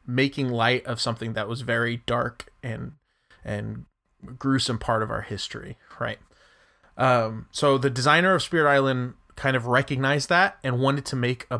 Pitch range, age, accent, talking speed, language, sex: 120-140 Hz, 20-39, American, 165 wpm, English, male